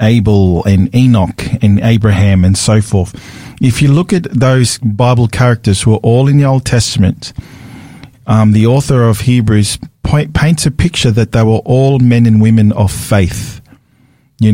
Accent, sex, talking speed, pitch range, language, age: Australian, male, 170 wpm, 110-135 Hz, English, 40-59